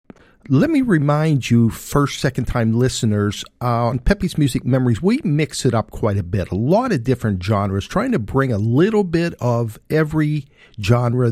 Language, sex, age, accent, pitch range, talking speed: English, male, 50-69, American, 115-155 Hz, 180 wpm